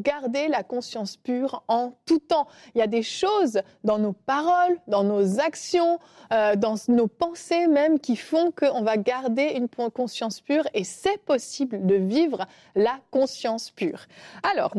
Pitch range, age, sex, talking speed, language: 220-310 Hz, 30-49, female, 160 wpm, French